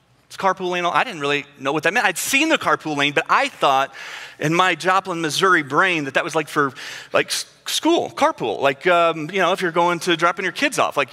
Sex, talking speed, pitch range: male, 245 wpm, 145-195 Hz